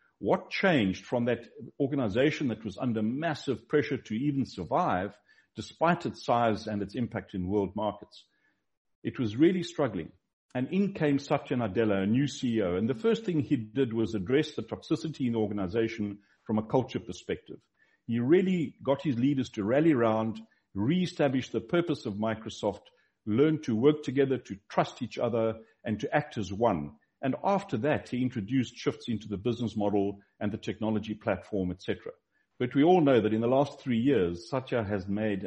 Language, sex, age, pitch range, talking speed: English, male, 60-79, 105-135 Hz, 180 wpm